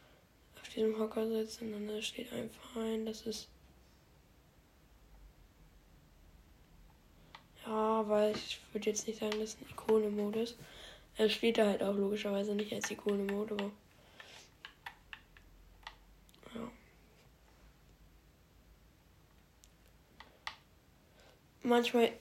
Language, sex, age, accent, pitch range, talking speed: German, female, 10-29, German, 200-225 Hz, 85 wpm